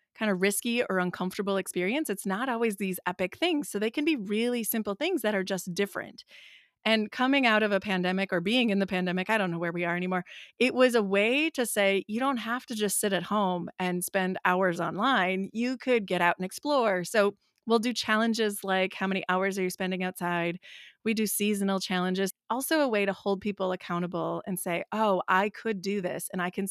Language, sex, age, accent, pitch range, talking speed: English, female, 30-49, American, 180-220 Hz, 220 wpm